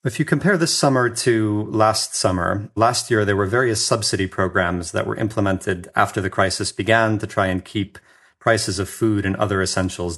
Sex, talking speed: male, 190 wpm